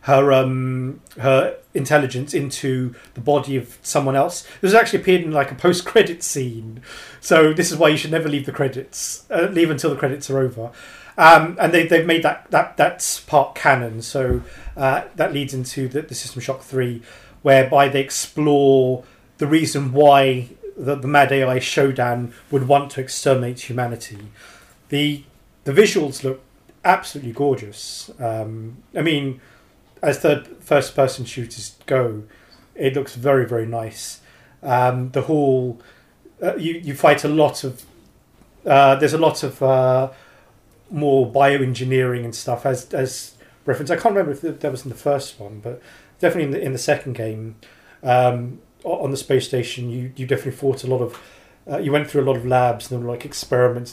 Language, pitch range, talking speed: English, 125-145 Hz, 175 wpm